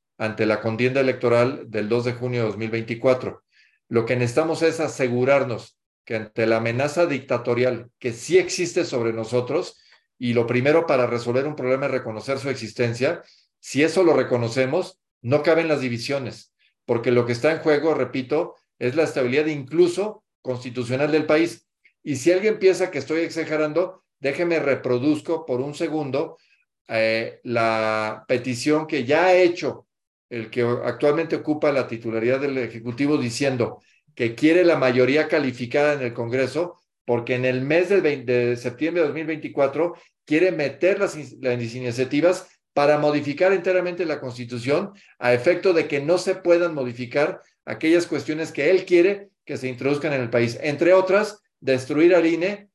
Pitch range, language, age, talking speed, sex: 125-165 Hz, Spanish, 50-69, 155 wpm, male